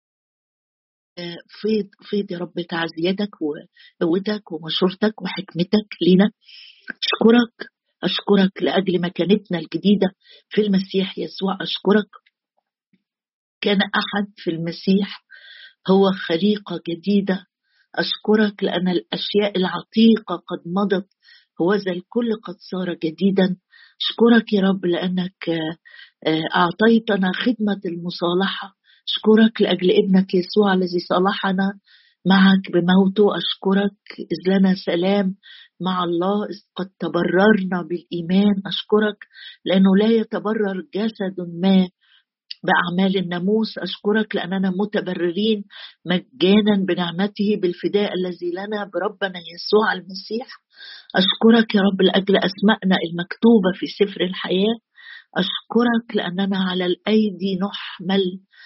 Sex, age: female, 50-69